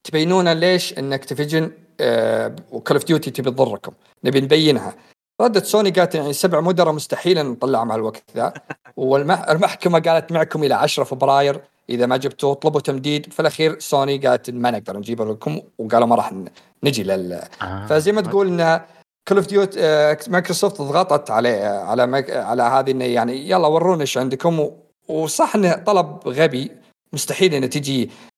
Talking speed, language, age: 160 wpm, Arabic, 50-69